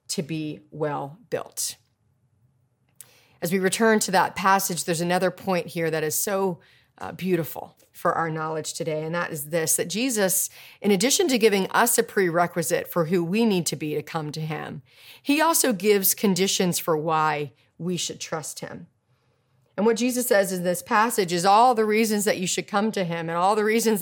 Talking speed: 190 wpm